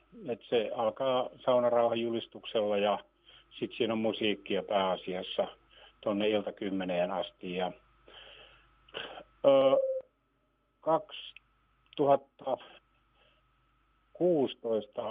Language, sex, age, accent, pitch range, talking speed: Finnish, male, 60-79, native, 105-125 Hz, 65 wpm